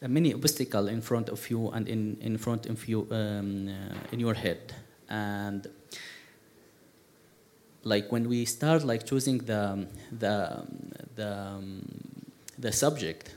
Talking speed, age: 135 wpm, 30-49